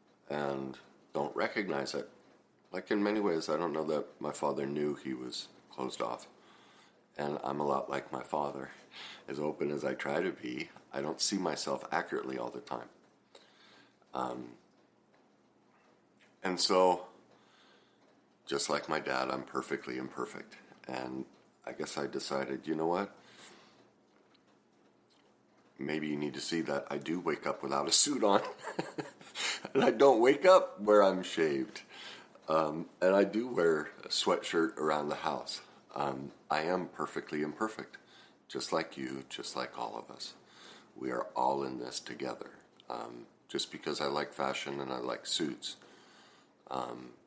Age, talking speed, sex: 50-69, 155 wpm, male